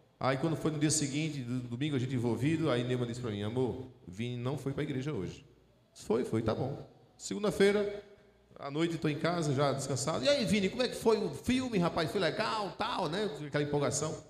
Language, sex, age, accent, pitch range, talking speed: Portuguese, male, 40-59, Brazilian, 135-205 Hz, 215 wpm